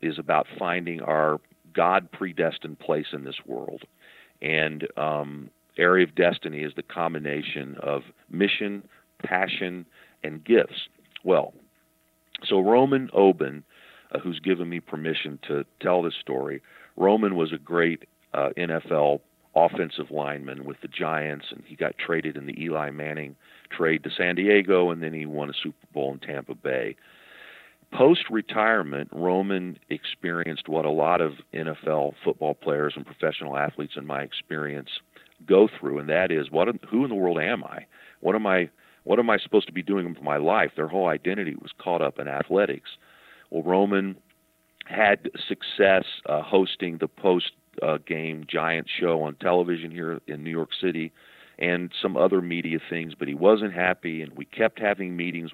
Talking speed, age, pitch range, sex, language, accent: 165 wpm, 50-69, 75-90 Hz, male, English, American